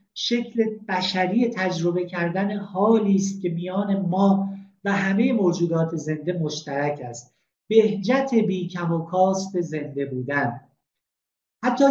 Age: 50-69